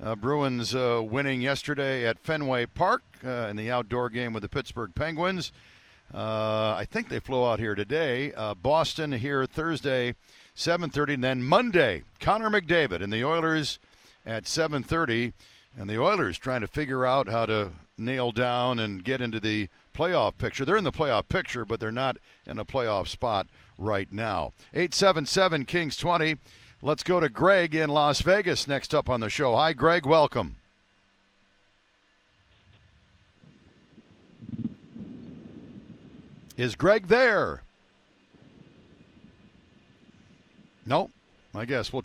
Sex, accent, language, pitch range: male, American, English, 115-155 Hz